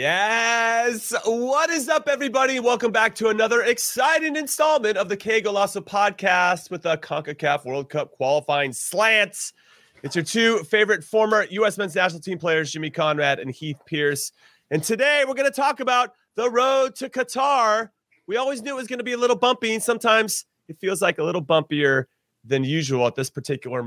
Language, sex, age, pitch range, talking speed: English, male, 30-49, 155-245 Hz, 180 wpm